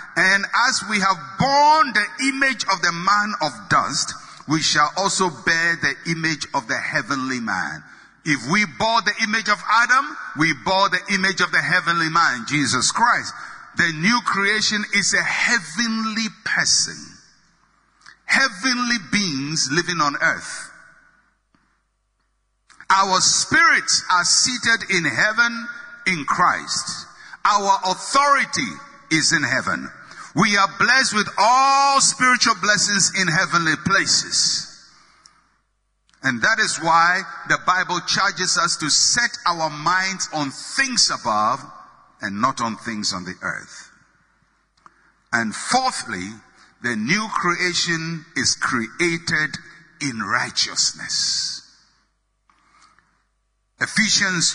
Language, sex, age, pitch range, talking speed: English, male, 60-79, 165-225 Hz, 115 wpm